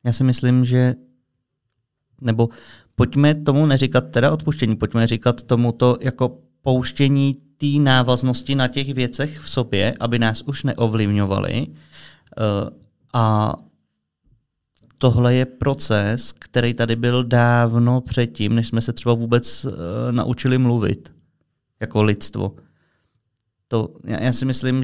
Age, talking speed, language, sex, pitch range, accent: 30-49, 125 wpm, Czech, male, 115-130 Hz, native